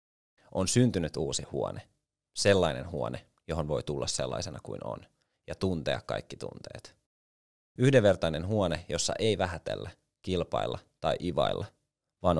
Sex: male